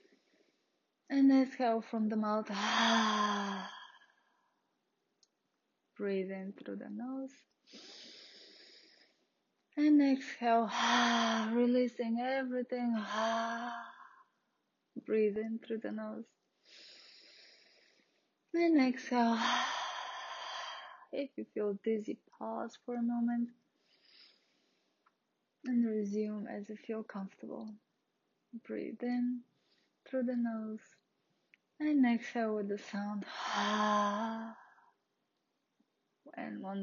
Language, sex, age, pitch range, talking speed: English, female, 20-39, 215-280 Hz, 85 wpm